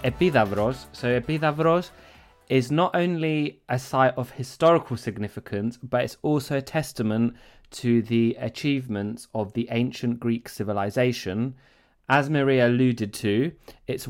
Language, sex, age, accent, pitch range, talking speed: Greek, male, 20-39, British, 115-135 Hz, 125 wpm